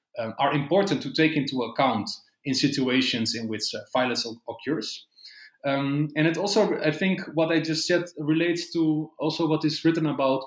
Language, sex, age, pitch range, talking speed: English, male, 30-49, 125-160 Hz, 180 wpm